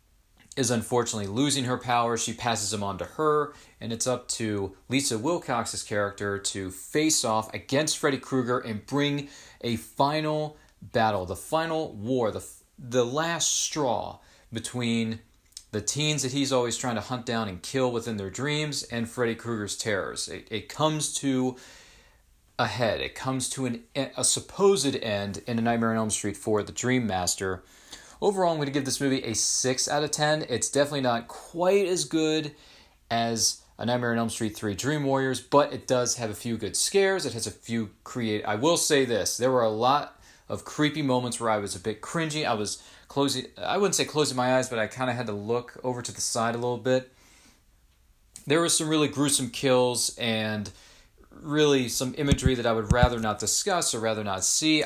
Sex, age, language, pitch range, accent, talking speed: male, 40-59, English, 110-140 Hz, American, 195 wpm